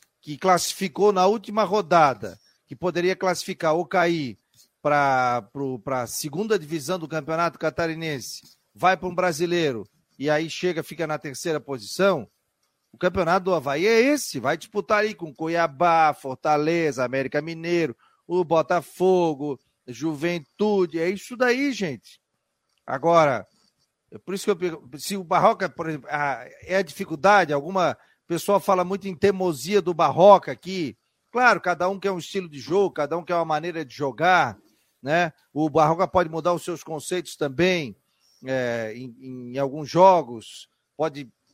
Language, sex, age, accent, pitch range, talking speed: Portuguese, male, 40-59, Brazilian, 150-195 Hz, 145 wpm